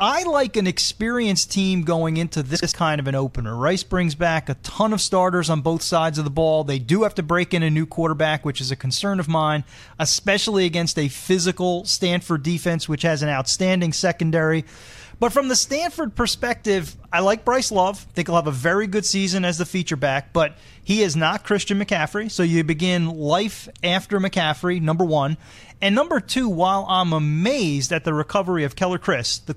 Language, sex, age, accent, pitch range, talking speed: English, male, 30-49, American, 160-205 Hz, 200 wpm